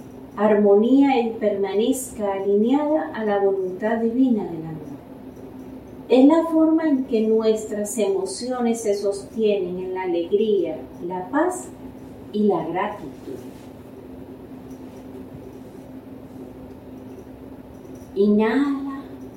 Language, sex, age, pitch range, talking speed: Spanish, female, 40-59, 200-245 Hz, 85 wpm